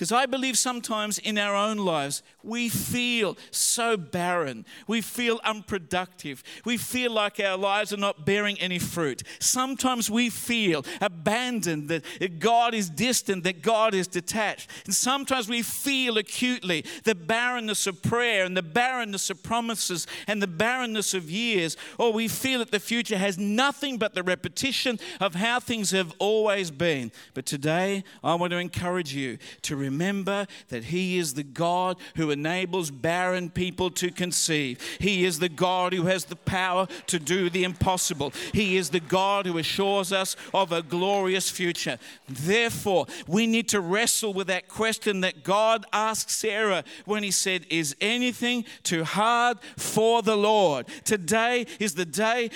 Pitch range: 180-230 Hz